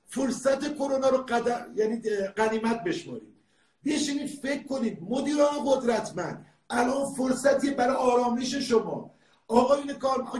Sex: male